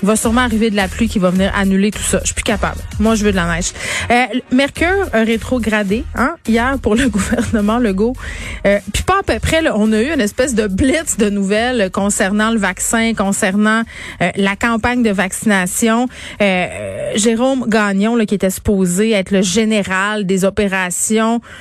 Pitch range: 190-230 Hz